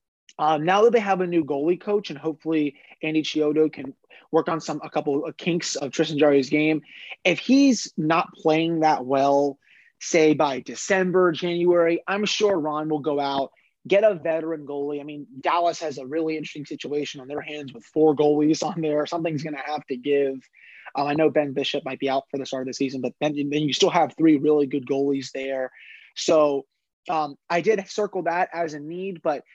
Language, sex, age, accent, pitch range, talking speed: English, male, 20-39, American, 145-170 Hz, 205 wpm